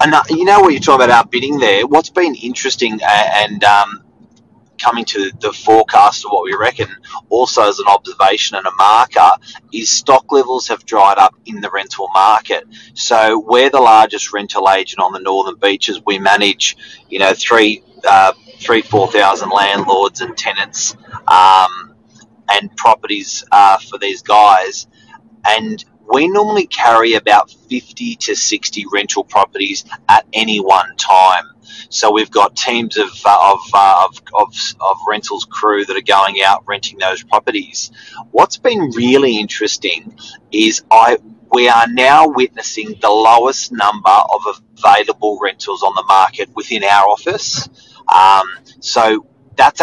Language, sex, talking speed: English, male, 155 wpm